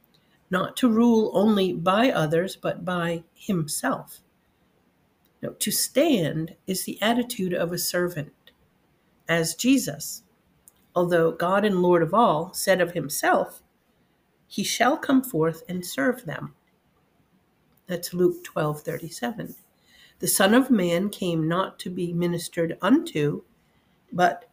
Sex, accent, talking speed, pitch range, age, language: female, American, 125 wpm, 170-230 Hz, 50-69, English